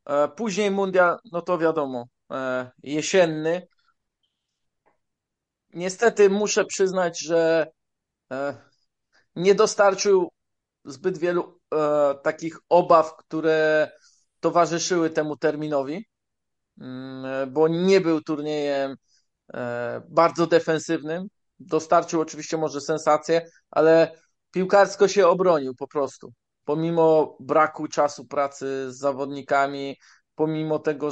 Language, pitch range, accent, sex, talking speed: Polish, 145-165 Hz, native, male, 85 wpm